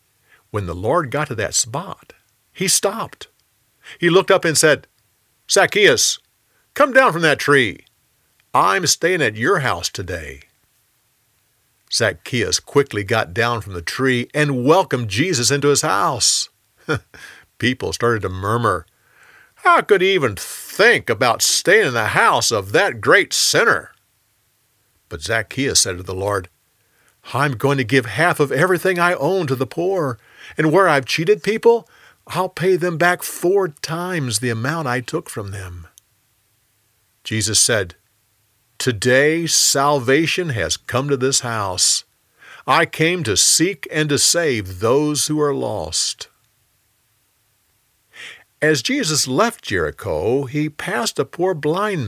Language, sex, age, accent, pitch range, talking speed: English, male, 50-69, American, 110-160 Hz, 140 wpm